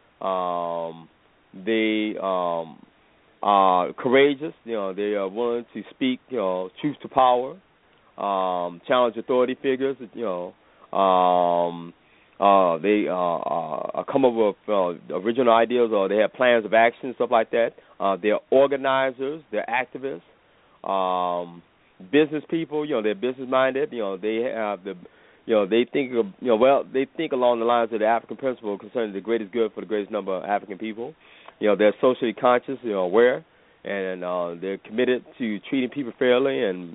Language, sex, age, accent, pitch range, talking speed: English, male, 30-49, American, 95-125 Hz, 170 wpm